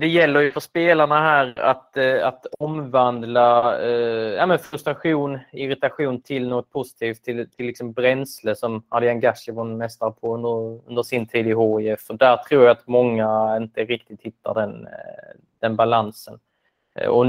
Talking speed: 155 wpm